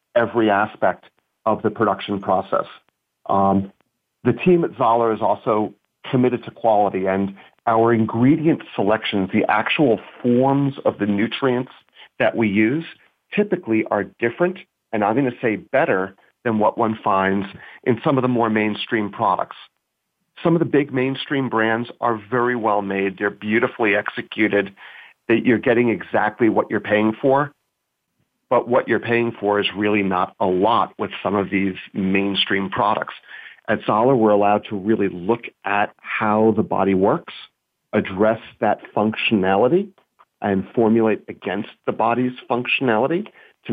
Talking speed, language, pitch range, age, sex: 150 wpm, English, 100-120 Hz, 40-59, male